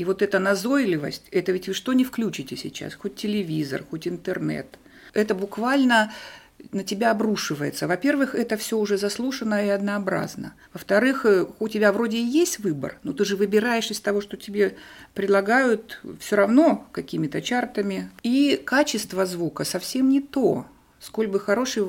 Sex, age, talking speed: female, 50-69, 155 wpm